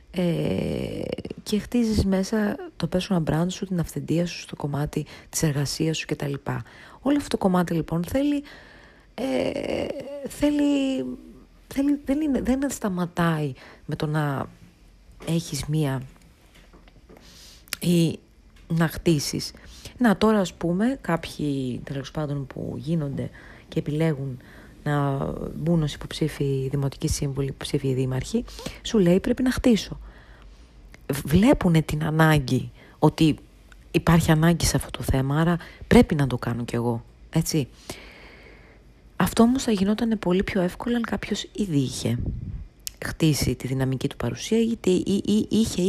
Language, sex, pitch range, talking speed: Greek, female, 140-210 Hz, 135 wpm